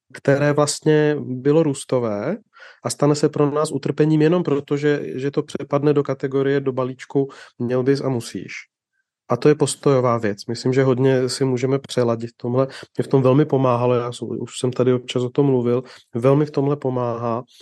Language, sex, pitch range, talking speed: Czech, male, 130-145 Hz, 185 wpm